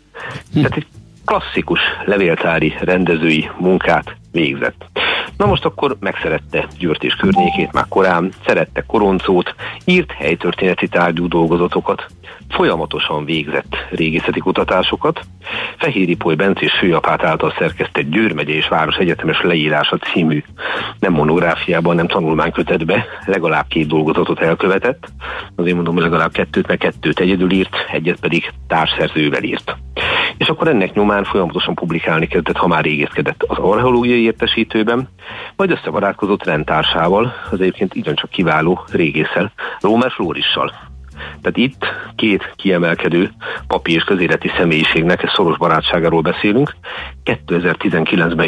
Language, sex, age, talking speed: Hungarian, male, 50-69, 120 wpm